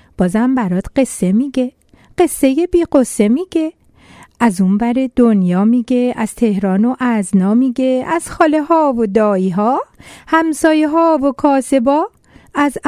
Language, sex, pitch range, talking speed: Persian, female, 245-335 Hz, 130 wpm